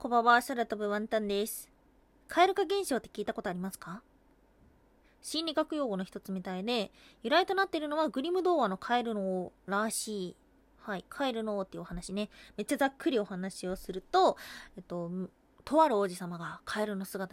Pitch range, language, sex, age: 205-335 Hz, Japanese, female, 20-39